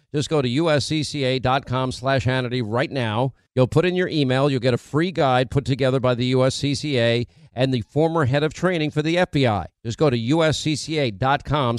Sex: male